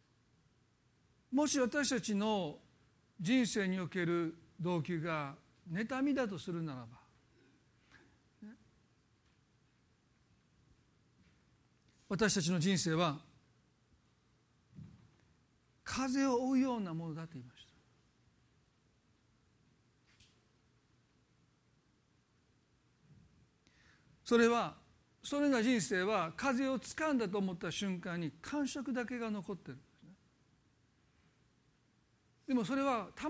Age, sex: 50-69, male